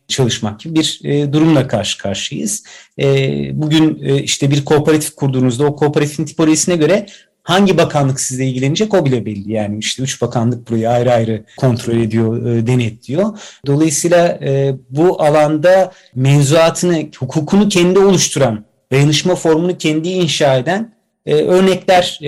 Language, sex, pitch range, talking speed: Turkish, male, 125-155 Hz, 120 wpm